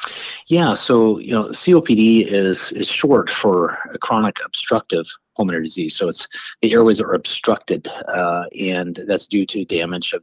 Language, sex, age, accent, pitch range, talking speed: English, male, 30-49, American, 90-115 Hz, 160 wpm